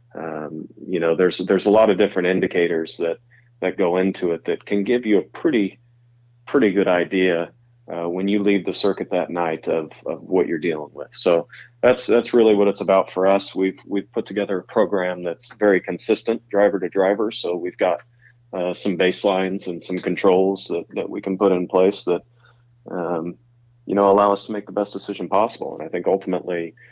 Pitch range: 85-110 Hz